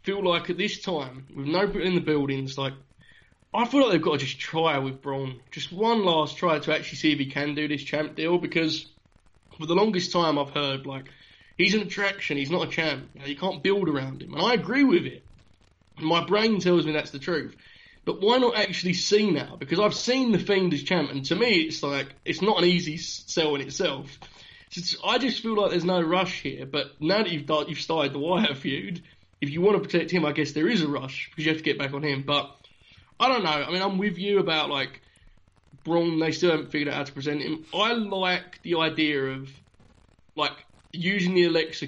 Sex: male